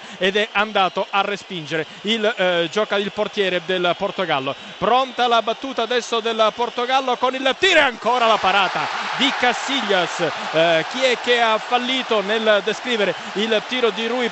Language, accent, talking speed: Italian, native, 165 wpm